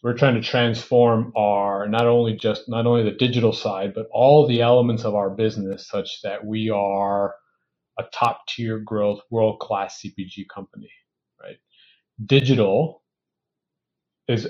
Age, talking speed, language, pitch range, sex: 30-49, 145 wpm, English, 110-130 Hz, male